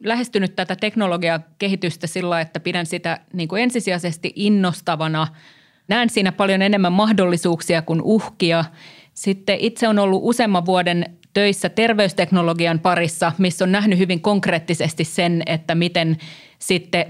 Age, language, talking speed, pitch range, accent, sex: 30-49, Finnish, 125 wpm, 165-195 Hz, native, female